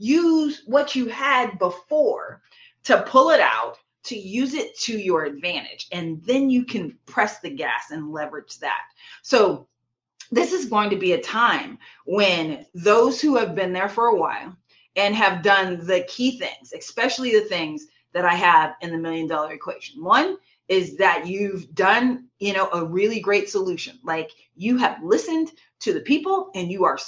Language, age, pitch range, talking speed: English, 30-49, 200-300 Hz, 175 wpm